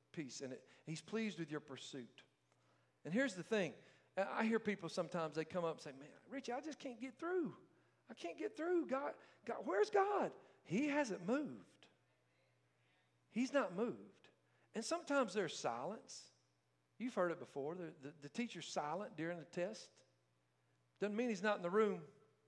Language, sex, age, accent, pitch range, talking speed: English, male, 50-69, American, 145-210 Hz, 170 wpm